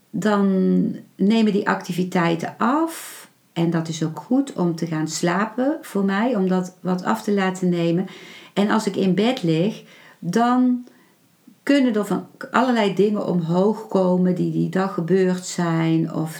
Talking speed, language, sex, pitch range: 155 wpm, Dutch, female, 170-200 Hz